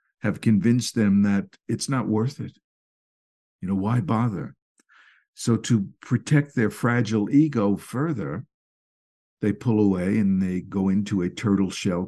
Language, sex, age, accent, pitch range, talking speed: English, male, 60-79, American, 95-130 Hz, 145 wpm